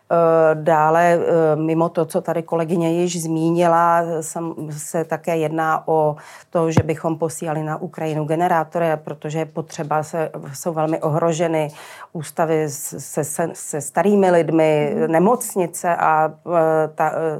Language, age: Czech, 30-49